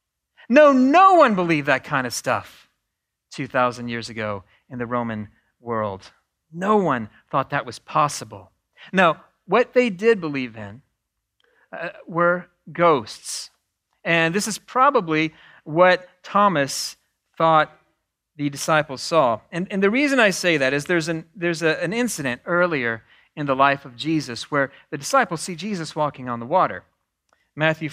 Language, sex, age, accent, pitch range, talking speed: English, male, 40-59, American, 135-215 Hz, 150 wpm